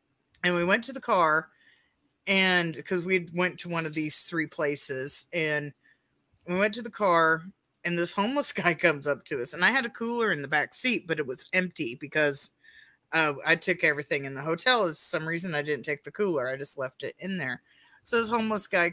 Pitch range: 150-195 Hz